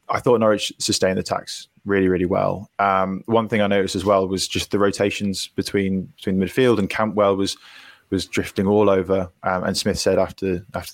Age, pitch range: 20-39, 90-100 Hz